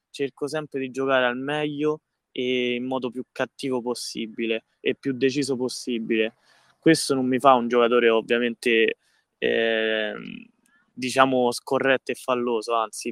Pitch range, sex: 120-140 Hz, male